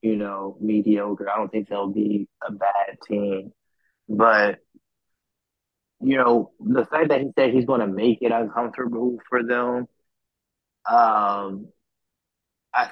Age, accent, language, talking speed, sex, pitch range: 20-39, American, English, 135 wpm, male, 105-115 Hz